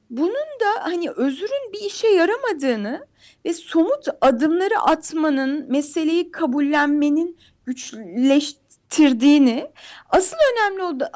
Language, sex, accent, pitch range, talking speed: Turkish, female, native, 285-370 Hz, 90 wpm